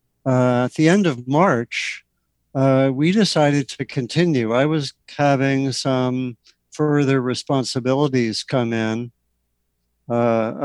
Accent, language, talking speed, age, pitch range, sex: American, English, 115 wpm, 60-79, 115-135 Hz, male